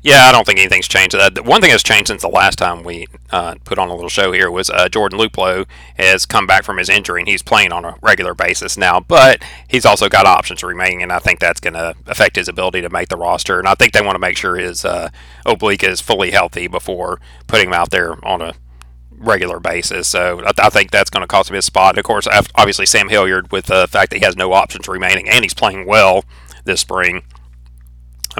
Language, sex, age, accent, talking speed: English, male, 30-49, American, 240 wpm